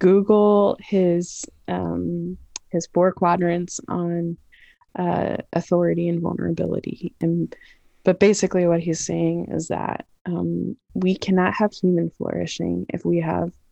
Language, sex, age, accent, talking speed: English, female, 20-39, American, 125 wpm